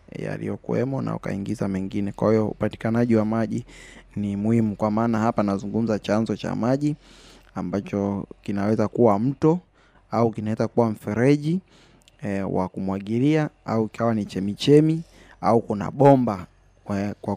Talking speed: 125 wpm